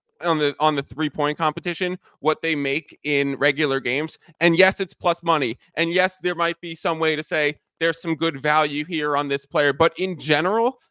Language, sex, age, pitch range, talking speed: English, male, 20-39, 145-175 Hz, 205 wpm